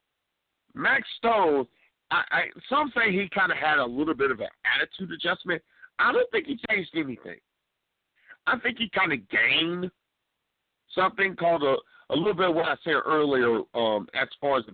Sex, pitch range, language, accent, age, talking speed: male, 150-215 Hz, English, American, 50-69, 175 wpm